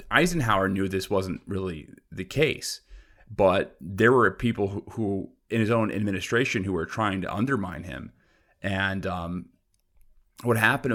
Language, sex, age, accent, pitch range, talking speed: English, male, 30-49, American, 95-110 Hz, 150 wpm